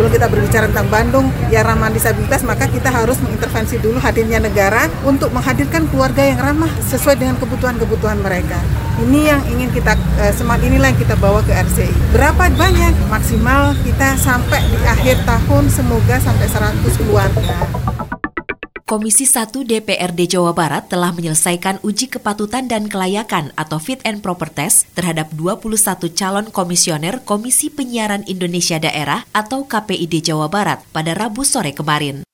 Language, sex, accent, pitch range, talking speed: Indonesian, female, native, 150-210 Hz, 145 wpm